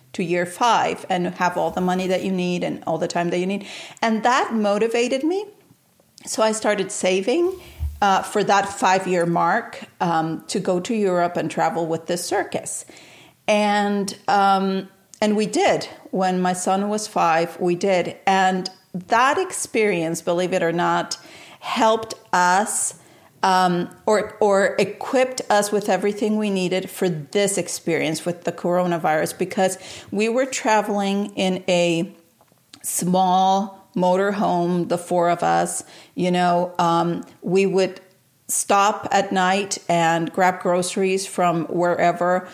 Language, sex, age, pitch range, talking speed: English, female, 50-69, 175-200 Hz, 145 wpm